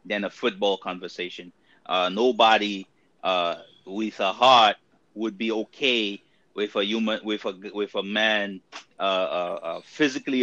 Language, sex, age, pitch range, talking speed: English, male, 30-49, 105-130 Hz, 145 wpm